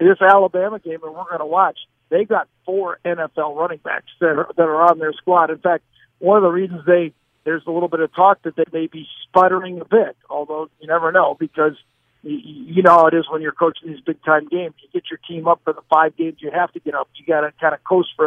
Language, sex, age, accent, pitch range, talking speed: English, male, 50-69, American, 155-180 Hz, 260 wpm